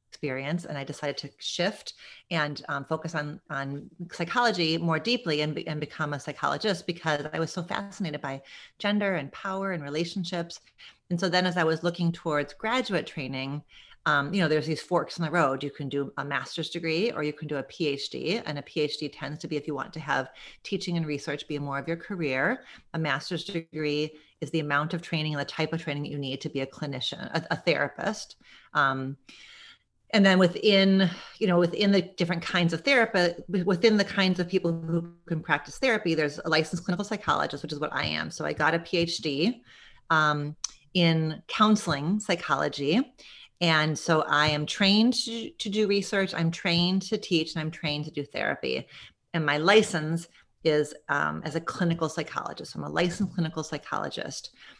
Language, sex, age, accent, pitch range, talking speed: English, female, 30-49, American, 150-185 Hz, 190 wpm